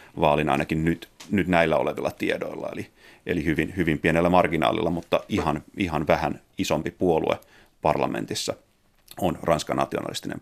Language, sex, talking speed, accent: Finnish, male, 130 wpm, native